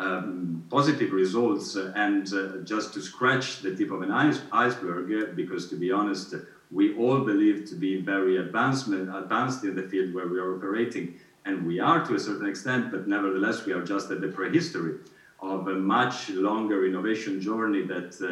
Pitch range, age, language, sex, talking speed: 90-115 Hz, 50-69, Italian, male, 185 wpm